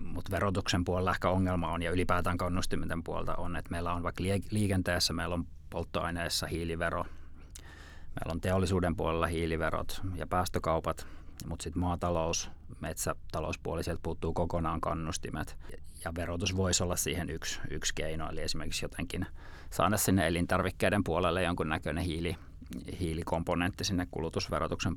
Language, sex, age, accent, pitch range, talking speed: Finnish, male, 30-49, native, 80-95 Hz, 130 wpm